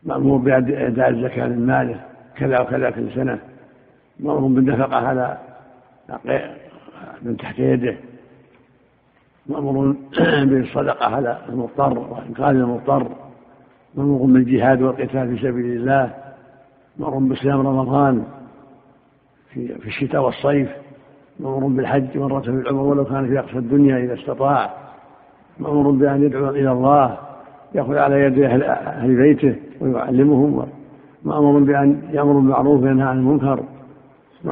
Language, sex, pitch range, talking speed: Arabic, male, 130-145 Hz, 110 wpm